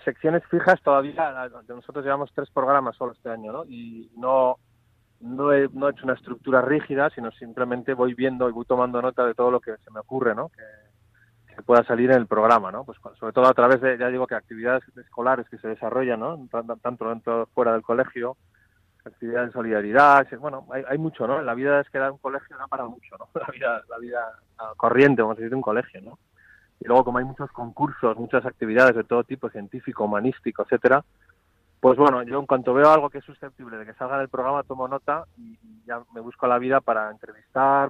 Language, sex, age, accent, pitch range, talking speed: Spanish, male, 30-49, Spanish, 115-135 Hz, 215 wpm